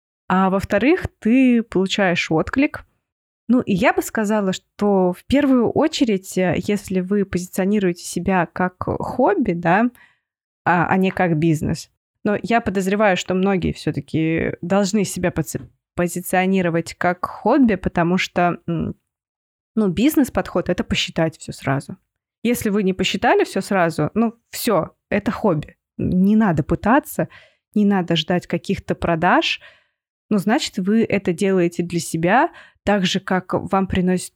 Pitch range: 170-210 Hz